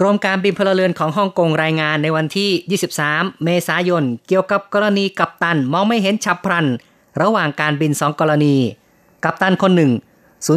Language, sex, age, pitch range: Thai, female, 20-39, 150-175 Hz